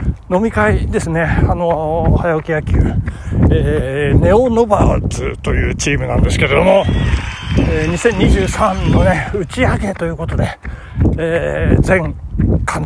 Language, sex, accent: Japanese, male, native